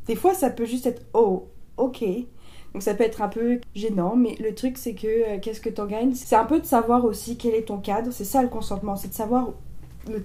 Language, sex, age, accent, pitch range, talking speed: French, female, 20-39, French, 195-240 Hz, 250 wpm